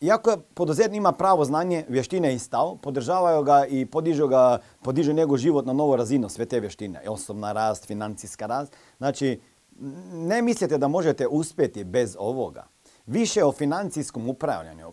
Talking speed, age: 155 wpm, 40-59